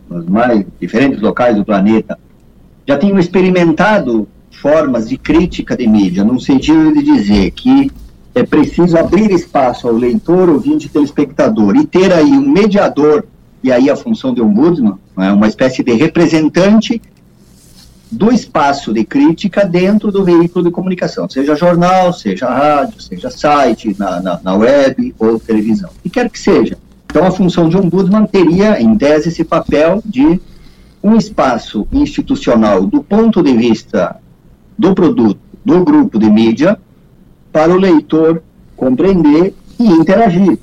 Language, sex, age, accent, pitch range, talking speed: Portuguese, male, 50-69, Brazilian, 140-225 Hz, 150 wpm